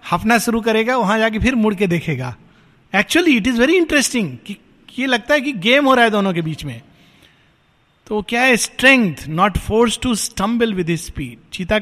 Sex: male